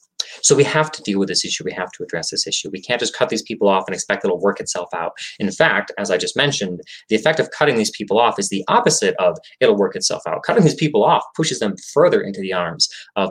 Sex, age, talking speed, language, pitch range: male, 20-39, 265 wpm, English, 95-140 Hz